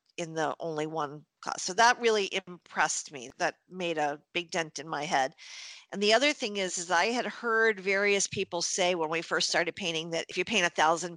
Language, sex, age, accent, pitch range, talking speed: English, female, 50-69, American, 180-245 Hz, 220 wpm